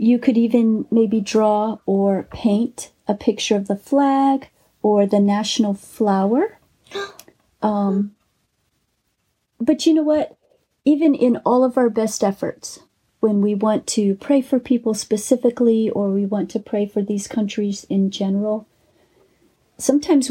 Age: 40-59